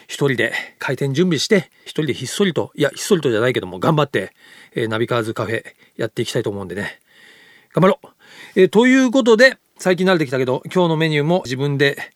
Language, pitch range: Japanese, 125-180 Hz